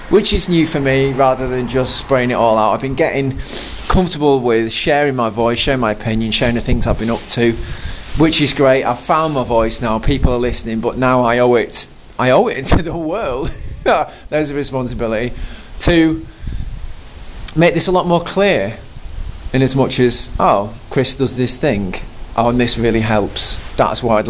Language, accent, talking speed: English, British, 200 wpm